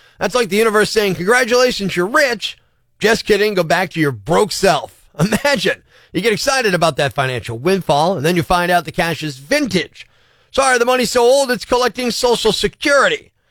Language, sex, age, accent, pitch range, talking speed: English, male, 40-59, American, 170-225 Hz, 185 wpm